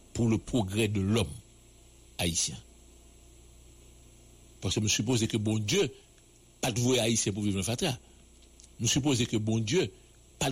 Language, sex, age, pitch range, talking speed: English, male, 60-79, 85-120 Hz, 155 wpm